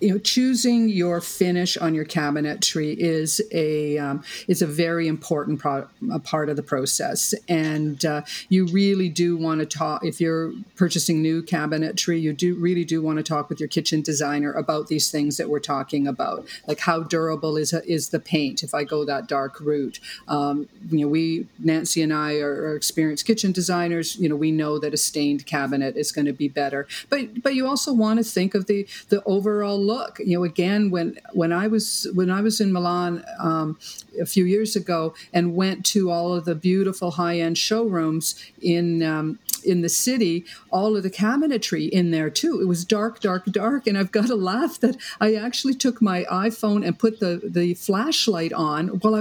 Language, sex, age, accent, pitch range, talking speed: English, female, 50-69, American, 155-210 Hz, 205 wpm